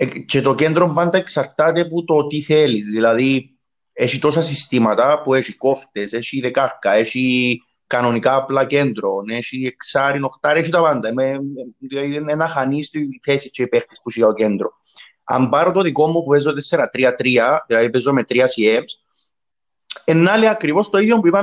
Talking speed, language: 160 wpm, Greek